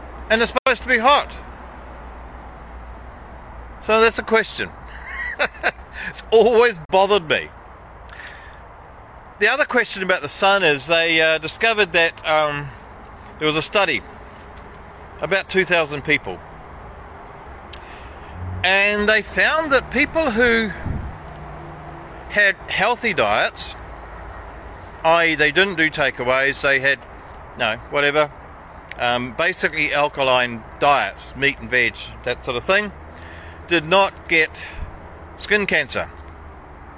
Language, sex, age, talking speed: English, male, 40-59, 110 wpm